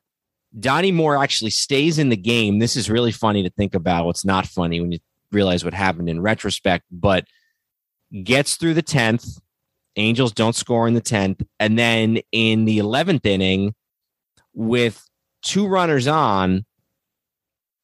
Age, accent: 30-49, American